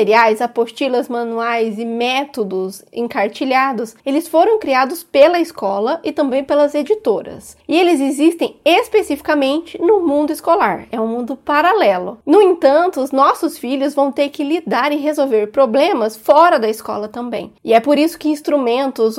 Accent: Brazilian